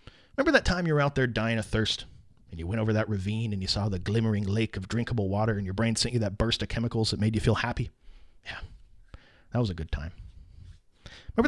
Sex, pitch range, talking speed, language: male, 110-160 Hz, 240 wpm, English